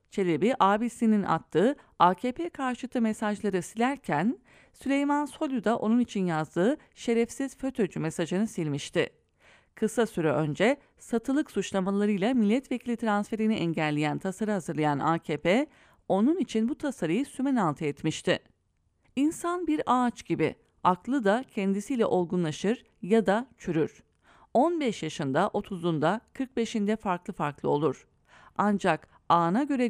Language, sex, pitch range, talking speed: English, female, 170-245 Hz, 110 wpm